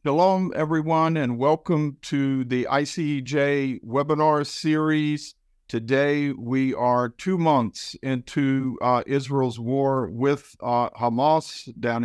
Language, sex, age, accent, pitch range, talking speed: English, male, 50-69, American, 115-140 Hz, 110 wpm